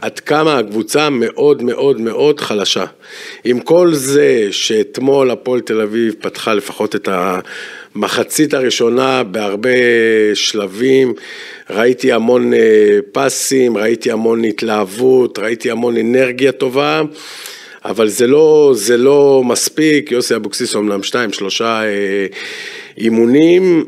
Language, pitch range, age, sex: Hebrew, 110-170 Hz, 50-69, male